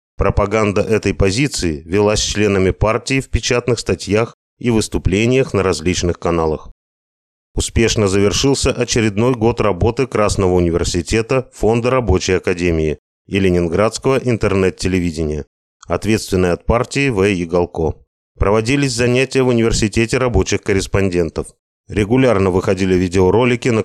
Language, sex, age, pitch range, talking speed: Russian, male, 30-49, 90-120 Hz, 105 wpm